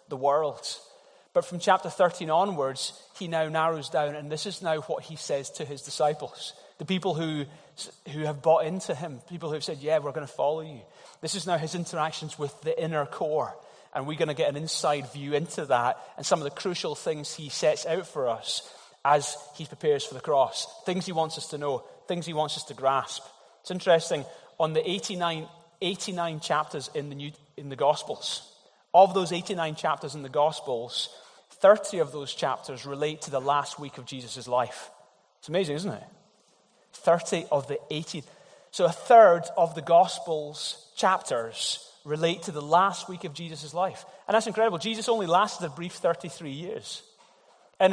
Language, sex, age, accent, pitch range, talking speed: English, male, 30-49, British, 150-180 Hz, 190 wpm